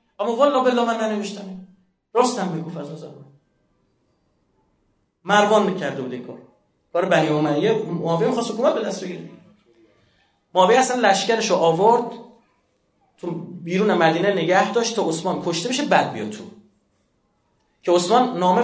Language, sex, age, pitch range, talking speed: Persian, male, 30-49, 175-235 Hz, 140 wpm